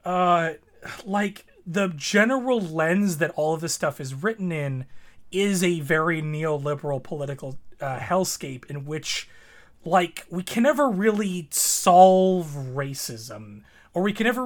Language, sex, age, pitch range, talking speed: English, male, 30-49, 140-175 Hz, 135 wpm